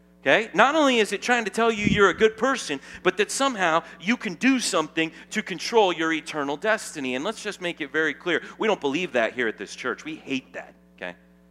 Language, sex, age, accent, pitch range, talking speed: English, male, 40-59, American, 145-215 Hz, 230 wpm